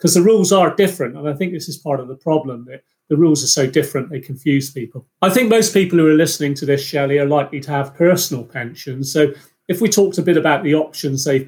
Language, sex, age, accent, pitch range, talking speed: English, male, 40-59, British, 140-170 Hz, 255 wpm